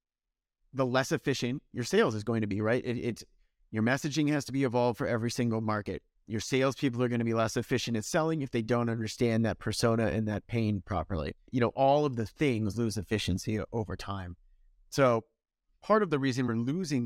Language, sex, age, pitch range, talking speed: English, male, 30-49, 105-125 Hz, 210 wpm